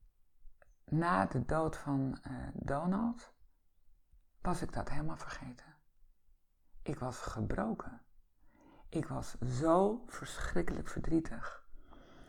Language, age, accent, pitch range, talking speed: Dutch, 50-69, Dutch, 120-155 Hz, 95 wpm